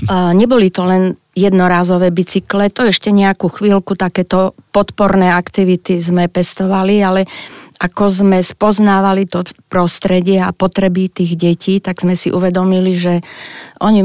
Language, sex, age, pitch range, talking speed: Slovak, female, 30-49, 175-195 Hz, 130 wpm